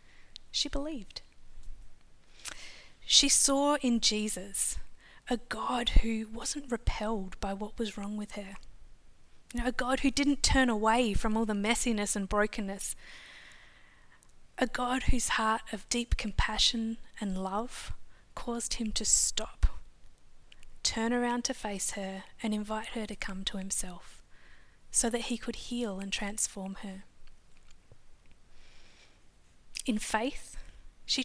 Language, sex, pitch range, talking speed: English, female, 200-245 Hz, 125 wpm